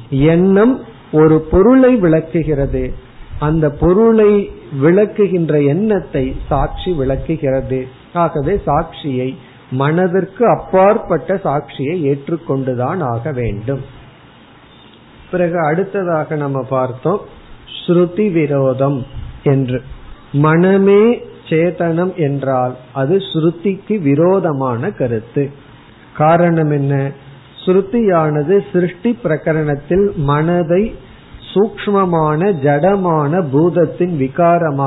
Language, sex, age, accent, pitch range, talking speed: Tamil, male, 50-69, native, 135-185 Hz, 65 wpm